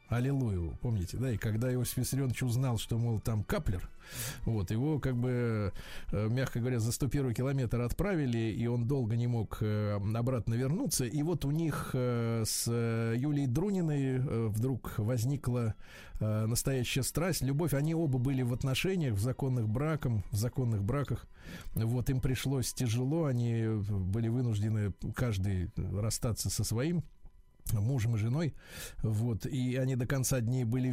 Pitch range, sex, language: 115-140 Hz, male, Russian